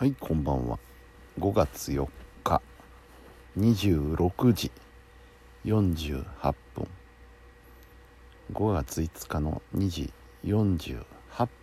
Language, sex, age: Japanese, male, 60-79